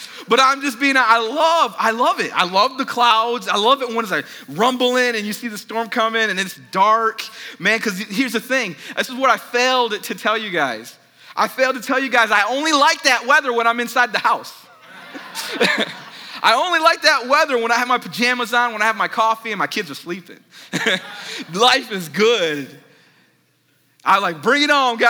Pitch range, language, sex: 200-250 Hz, English, male